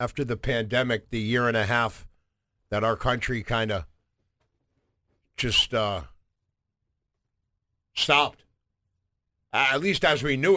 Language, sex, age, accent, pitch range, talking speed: English, male, 50-69, American, 100-125 Hz, 120 wpm